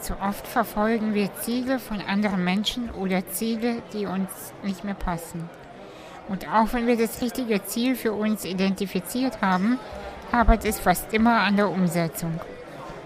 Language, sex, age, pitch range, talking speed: German, female, 60-79, 185-230 Hz, 150 wpm